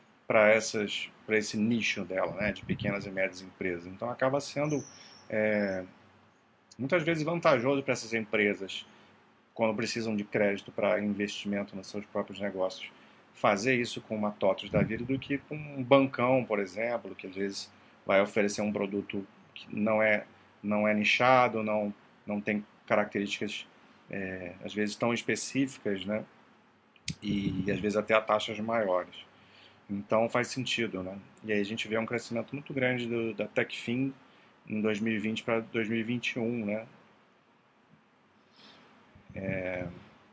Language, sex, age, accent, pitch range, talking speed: Portuguese, male, 40-59, Brazilian, 100-130 Hz, 135 wpm